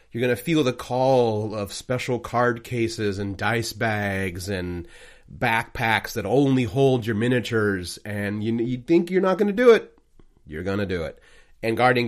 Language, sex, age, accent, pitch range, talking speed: English, male, 30-49, American, 110-140 Hz, 185 wpm